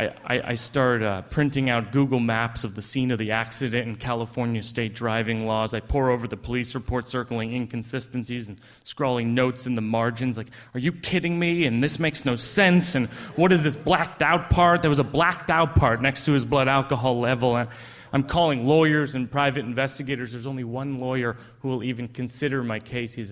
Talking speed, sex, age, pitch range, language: 200 wpm, male, 30-49, 115-150 Hz, English